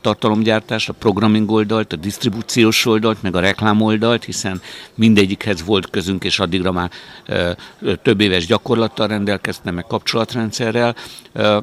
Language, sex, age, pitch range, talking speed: Hungarian, male, 60-79, 90-110 Hz, 135 wpm